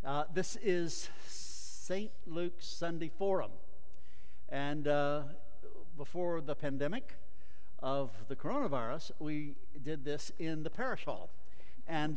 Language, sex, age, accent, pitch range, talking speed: English, male, 60-79, American, 90-145 Hz, 115 wpm